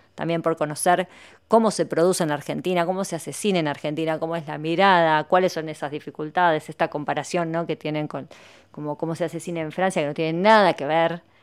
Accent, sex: Argentinian, female